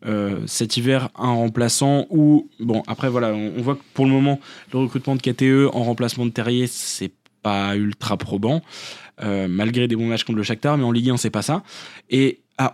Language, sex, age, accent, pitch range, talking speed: French, male, 20-39, French, 125-165 Hz, 210 wpm